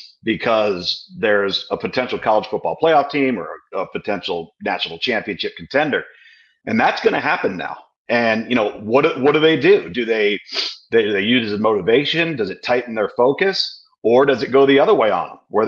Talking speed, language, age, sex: 195 wpm, English, 40-59, male